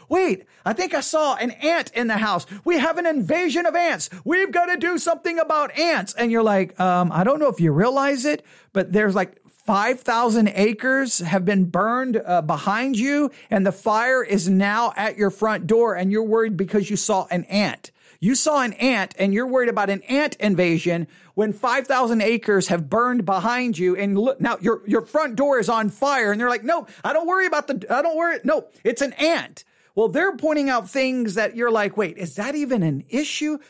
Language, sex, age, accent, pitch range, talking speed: English, male, 40-59, American, 185-275 Hz, 210 wpm